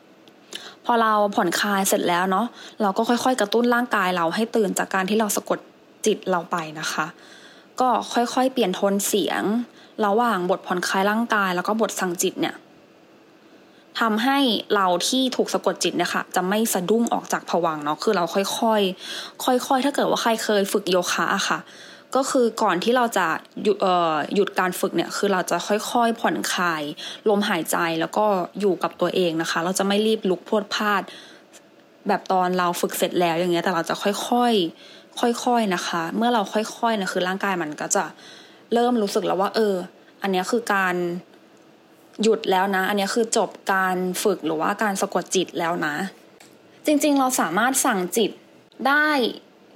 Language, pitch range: English, 185-230 Hz